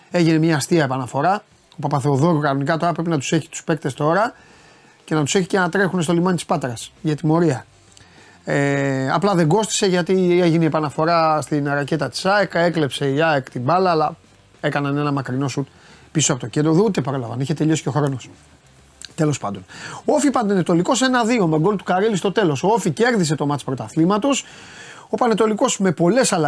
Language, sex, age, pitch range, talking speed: Greek, male, 30-49, 145-200 Hz, 190 wpm